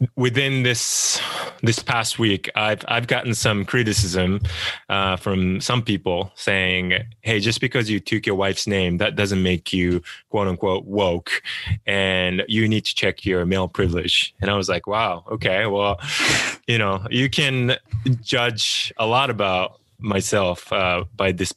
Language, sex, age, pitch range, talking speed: English, male, 20-39, 95-115 Hz, 155 wpm